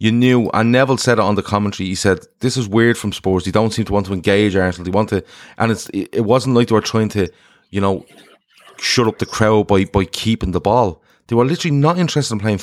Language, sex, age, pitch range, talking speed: English, male, 30-49, 100-140 Hz, 255 wpm